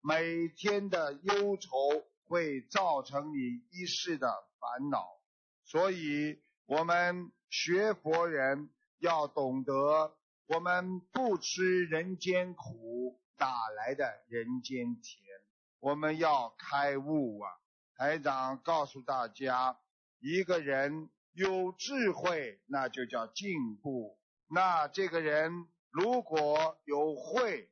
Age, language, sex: 50-69, Chinese, male